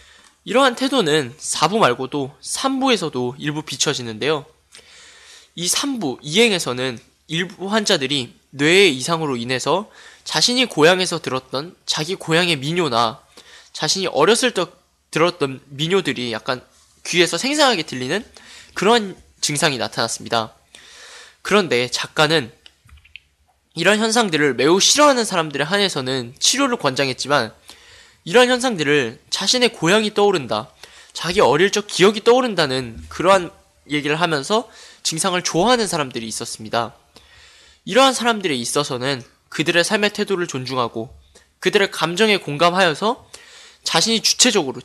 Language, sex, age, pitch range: Korean, male, 20-39, 135-220 Hz